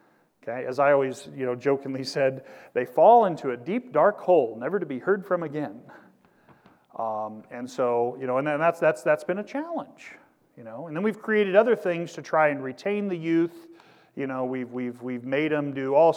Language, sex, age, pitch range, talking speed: English, male, 40-59, 125-160 Hz, 210 wpm